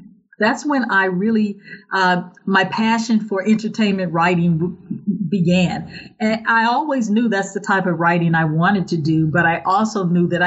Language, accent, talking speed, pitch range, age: English, American, 165 wpm, 180-215 Hz, 40-59